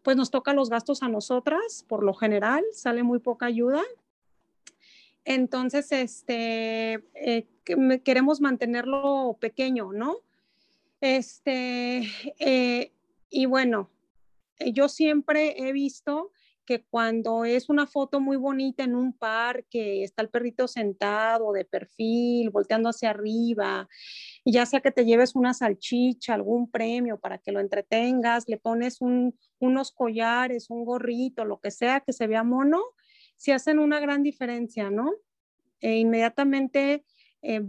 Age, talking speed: 30-49, 135 wpm